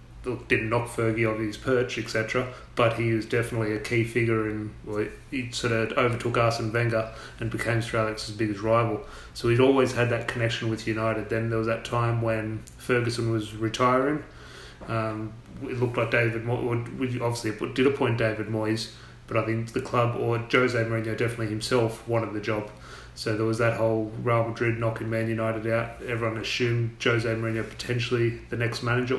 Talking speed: 175 wpm